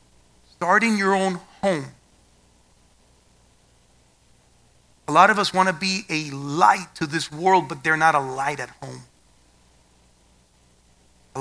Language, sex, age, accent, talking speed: English, male, 30-49, American, 125 wpm